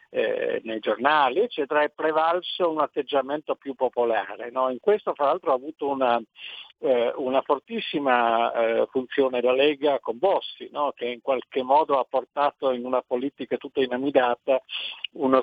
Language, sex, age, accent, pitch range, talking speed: Italian, male, 50-69, native, 125-160 Hz, 155 wpm